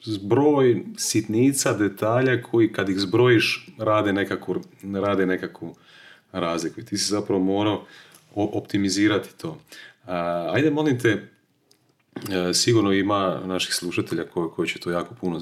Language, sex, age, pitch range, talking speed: Croatian, male, 30-49, 90-120 Hz, 115 wpm